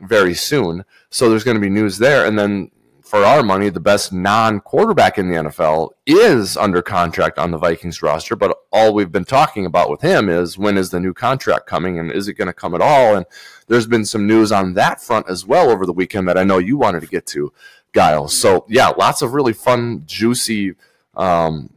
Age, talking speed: 30-49, 220 wpm